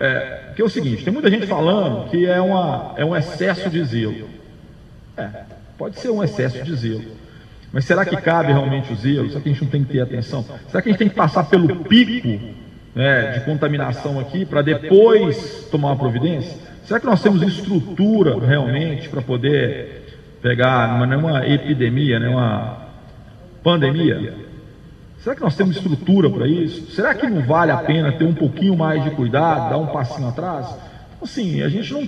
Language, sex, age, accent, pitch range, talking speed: Portuguese, male, 40-59, Brazilian, 130-185 Hz, 180 wpm